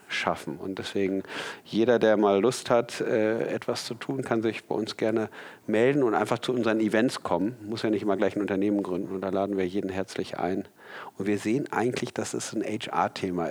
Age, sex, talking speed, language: 50-69, male, 210 wpm, German